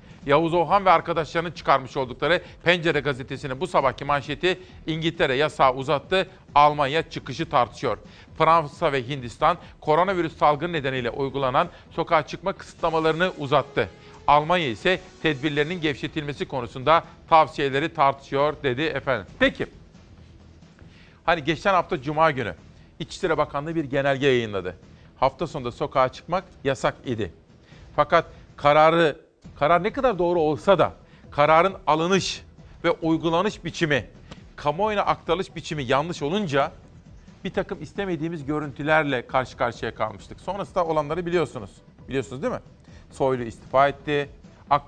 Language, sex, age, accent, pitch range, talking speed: Turkish, male, 50-69, native, 135-165 Hz, 120 wpm